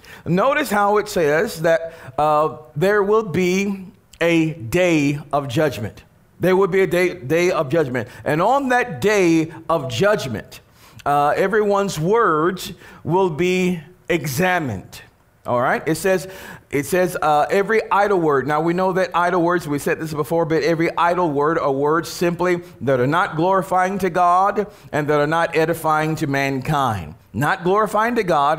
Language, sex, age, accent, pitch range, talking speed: English, male, 40-59, American, 150-190 Hz, 160 wpm